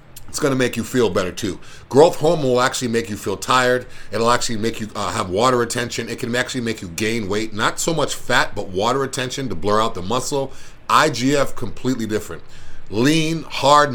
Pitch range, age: 115-145 Hz, 40-59